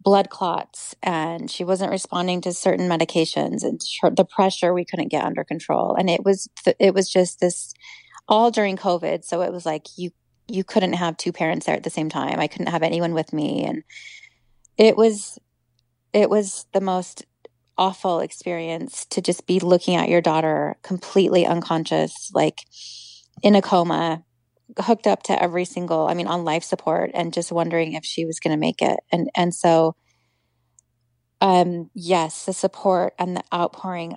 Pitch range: 165-190 Hz